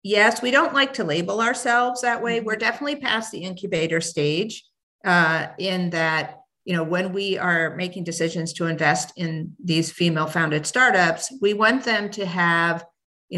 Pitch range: 170-220 Hz